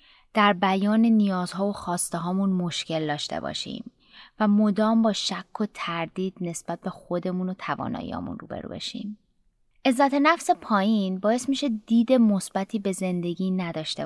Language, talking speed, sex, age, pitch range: Persian, 130 wpm, female, 20-39, 180-230 Hz